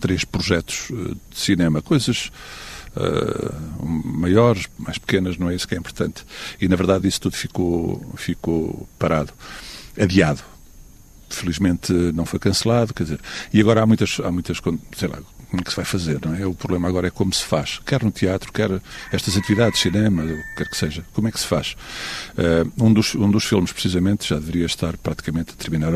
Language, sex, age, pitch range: Portuguese, male, 50-69, 90-110 Hz